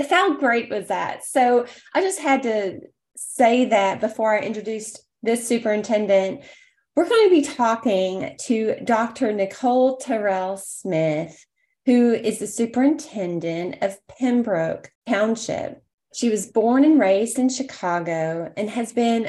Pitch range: 195-255 Hz